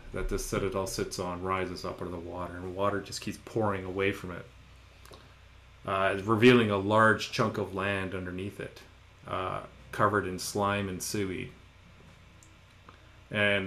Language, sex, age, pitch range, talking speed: English, male, 30-49, 95-105 Hz, 155 wpm